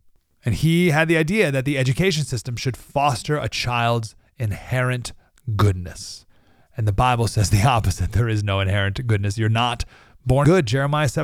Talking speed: 165 wpm